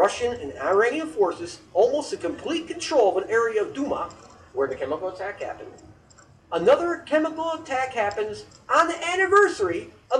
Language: English